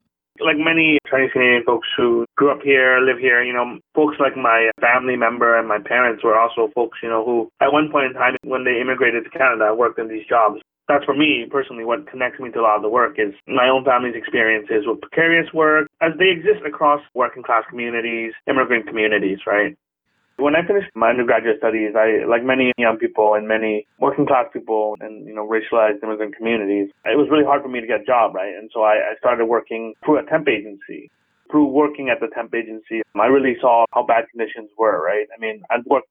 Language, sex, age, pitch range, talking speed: English, male, 30-49, 115-145 Hz, 220 wpm